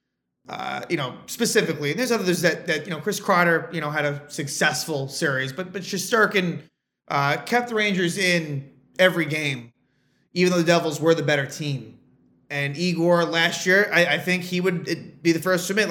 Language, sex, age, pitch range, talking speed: English, male, 30-49, 145-190 Hz, 190 wpm